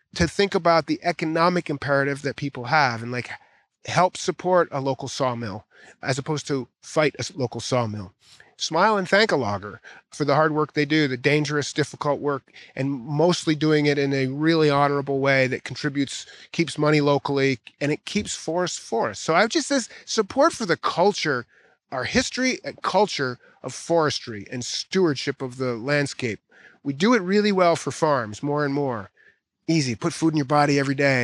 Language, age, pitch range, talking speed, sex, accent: English, 30-49, 135-160 Hz, 185 wpm, male, American